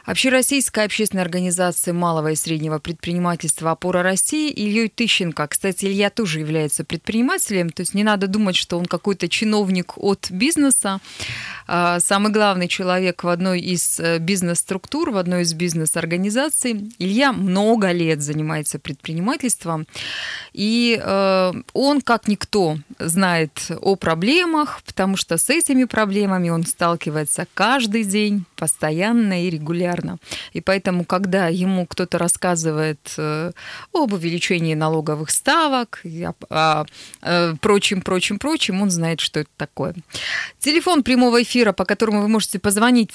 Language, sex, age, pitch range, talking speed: Russian, female, 20-39, 170-215 Hz, 125 wpm